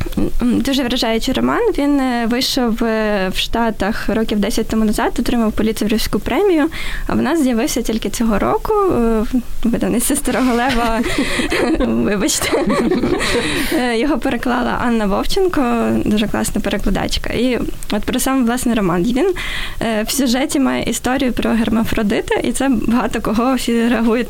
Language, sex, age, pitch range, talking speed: Ukrainian, female, 20-39, 220-265 Hz, 125 wpm